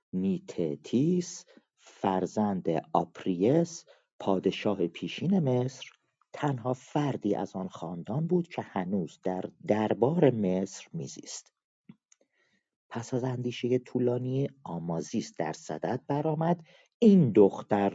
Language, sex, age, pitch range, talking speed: Persian, male, 40-59, 95-160 Hz, 95 wpm